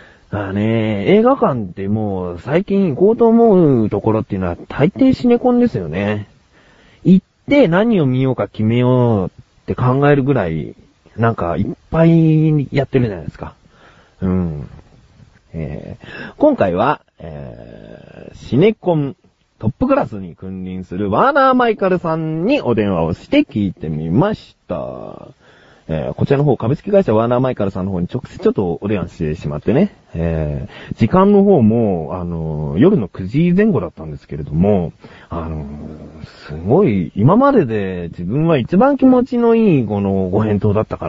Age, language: 40-59, Japanese